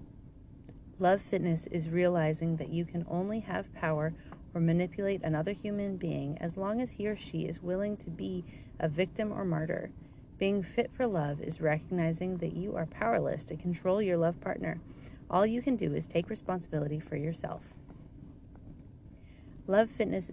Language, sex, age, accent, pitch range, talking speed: English, female, 30-49, American, 160-200 Hz, 160 wpm